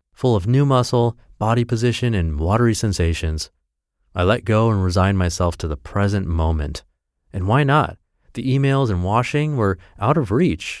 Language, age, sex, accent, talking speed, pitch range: English, 30-49, male, American, 165 wpm, 90-115 Hz